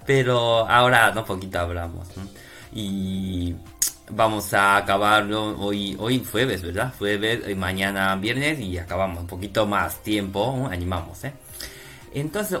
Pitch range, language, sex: 95-135 Hz, Japanese, male